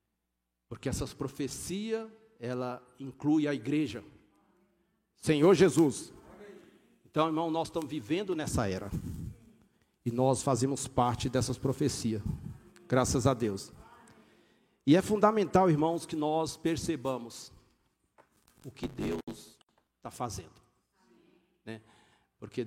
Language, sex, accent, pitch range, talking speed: Portuguese, male, Brazilian, 130-170 Hz, 105 wpm